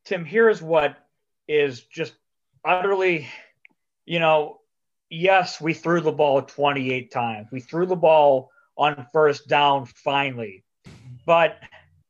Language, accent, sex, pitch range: English, American, male, 135-170 Hz